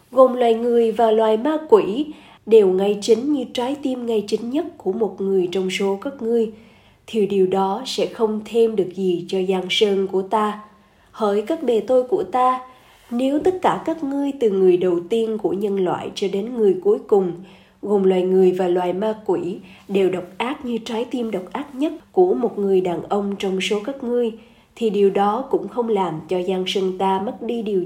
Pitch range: 190-240 Hz